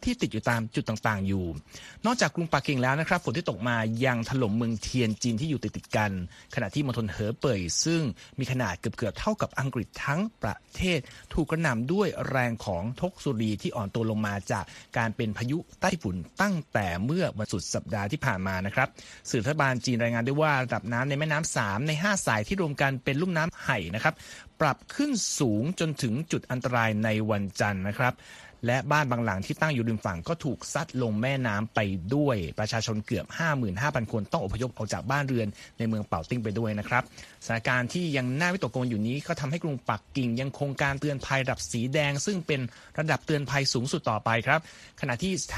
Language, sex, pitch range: Thai, male, 110-150 Hz